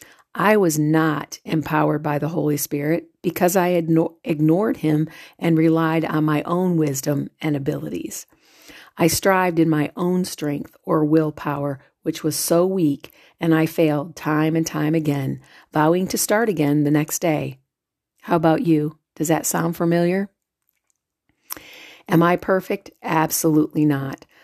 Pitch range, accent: 150-170 Hz, American